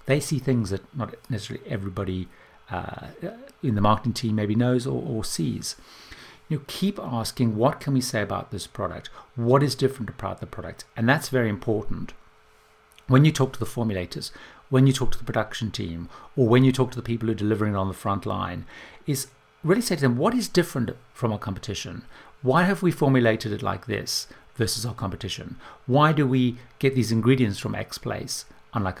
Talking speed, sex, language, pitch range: 200 wpm, male, English, 100-135 Hz